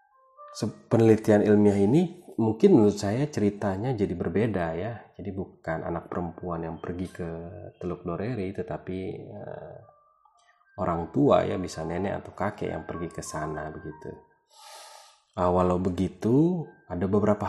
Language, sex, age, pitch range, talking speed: Indonesian, male, 30-49, 90-120 Hz, 130 wpm